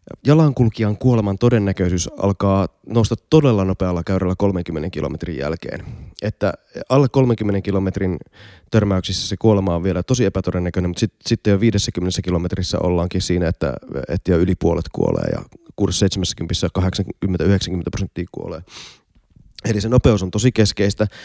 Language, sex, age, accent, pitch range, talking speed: Finnish, male, 30-49, native, 95-115 Hz, 135 wpm